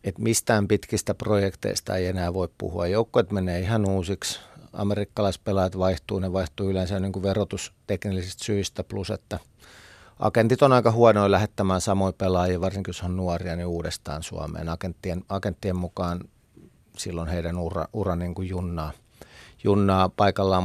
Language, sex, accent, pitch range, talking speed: Finnish, male, native, 90-100 Hz, 145 wpm